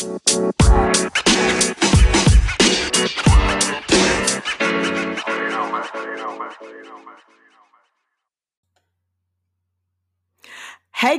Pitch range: 190-280 Hz